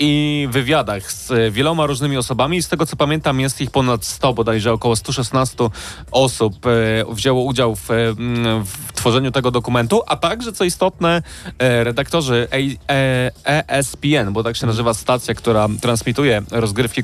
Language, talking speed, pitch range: Polish, 135 wpm, 120-150 Hz